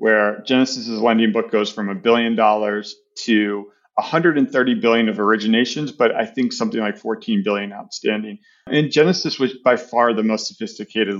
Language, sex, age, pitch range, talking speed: English, male, 40-59, 110-135 Hz, 160 wpm